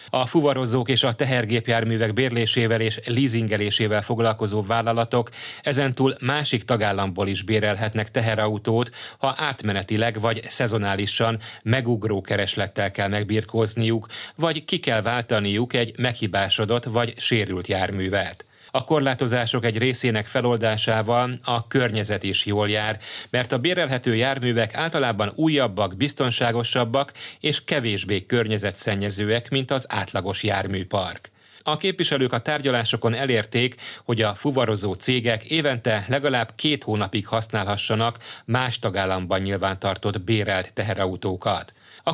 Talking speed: 110 wpm